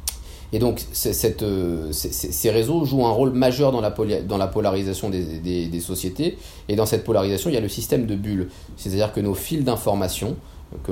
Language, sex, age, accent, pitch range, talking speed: French, male, 30-49, French, 95-125 Hz, 180 wpm